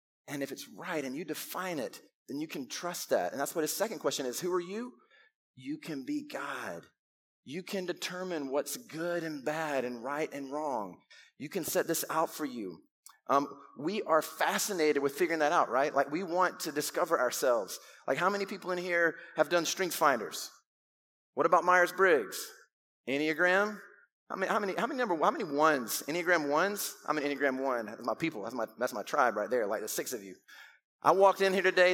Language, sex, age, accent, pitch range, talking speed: English, male, 30-49, American, 150-190 Hz, 205 wpm